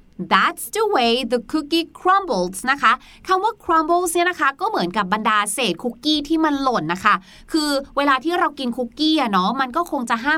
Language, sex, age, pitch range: Thai, female, 20-39, 250-330 Hz